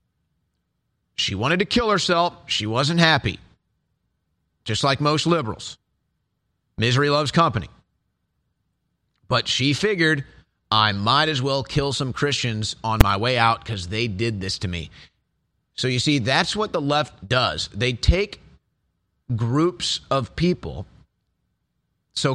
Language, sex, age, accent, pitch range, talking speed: English, male, 40-59, American, 115-155 Hz, 130 wpm